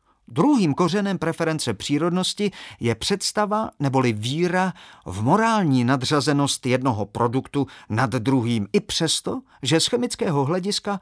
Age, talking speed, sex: 40-59, 115 wpm, male